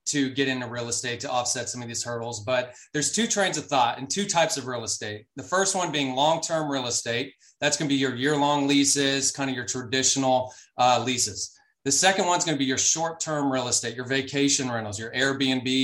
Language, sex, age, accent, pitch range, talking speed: English, male, 30-49, American, 125-155 Hz, 230 wpm